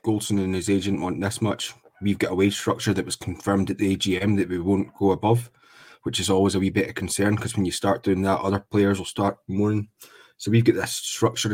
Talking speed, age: 245 wpm, 20-39